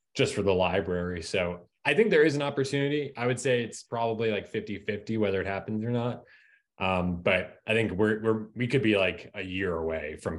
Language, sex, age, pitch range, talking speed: English, male, 20-39, 95-120 Hz, 225 wpm